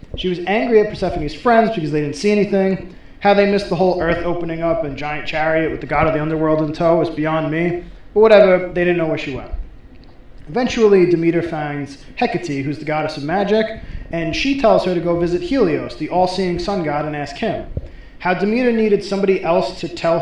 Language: English